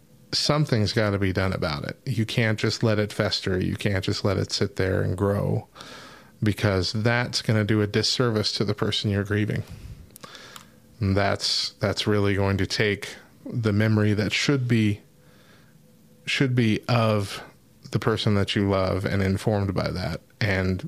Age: 30-49